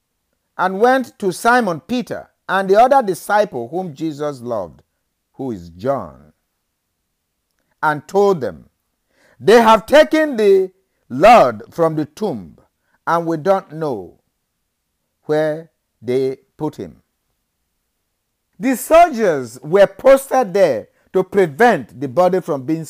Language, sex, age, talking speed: English, male, 50-69, 120 wpm